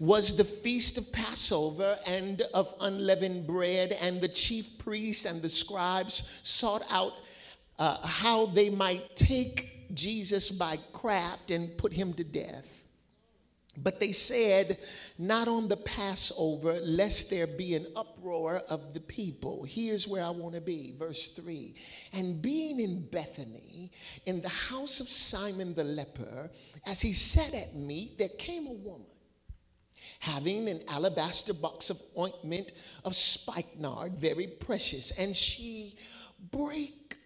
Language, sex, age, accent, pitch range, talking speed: English, male, 50-69, American, 165-210 Hz, 140 wpm